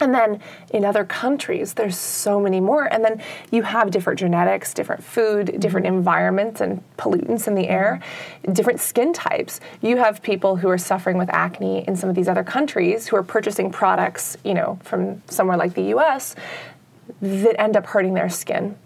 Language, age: English, 20-39